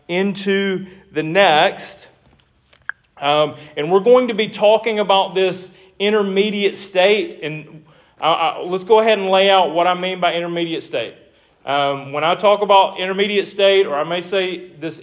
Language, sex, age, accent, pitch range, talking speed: English, male, 40-59, American, 170-200 Hz, 155 wpm